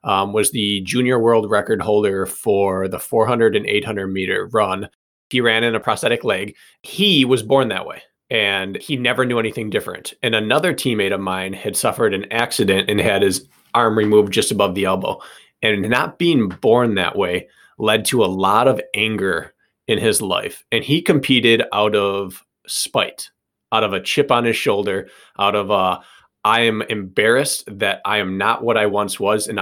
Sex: male